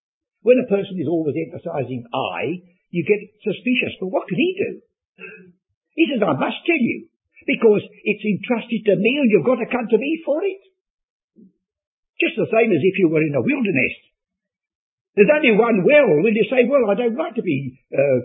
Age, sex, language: 60-79, male, English